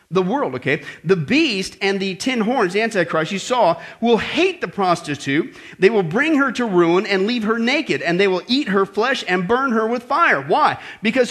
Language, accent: English, American